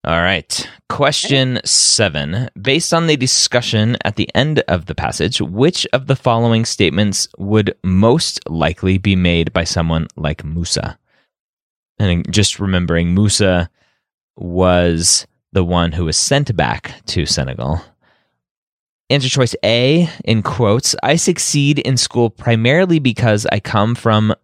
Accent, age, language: American, 30-49, English